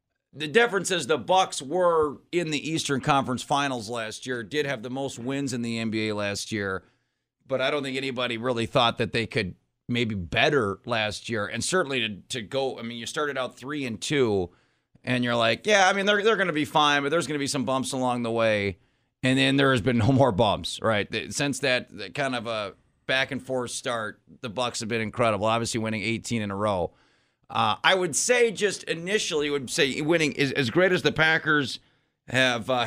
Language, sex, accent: English, male, American